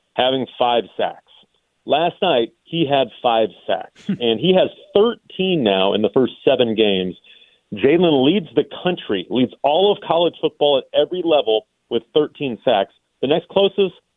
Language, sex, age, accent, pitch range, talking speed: English, male, 40-59, American, 120-170 Hz, 155 wpm